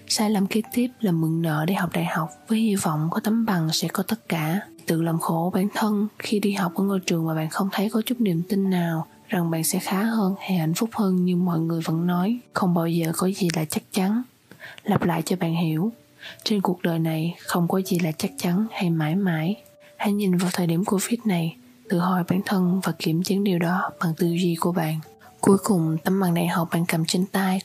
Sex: female